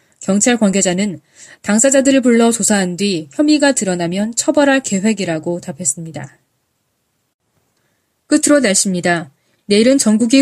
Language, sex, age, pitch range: Korean, female, 20-39, 175-245 Hz